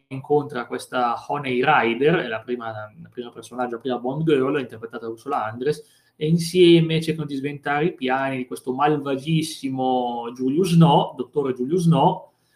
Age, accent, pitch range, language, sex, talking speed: 30-49, native, 125-165 Hz, Italian, male, 160 wpm